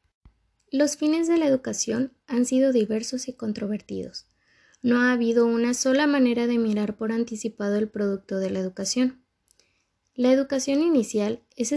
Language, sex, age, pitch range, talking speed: Spanish, female, 20-39, 210-260 Hz, 150 wpm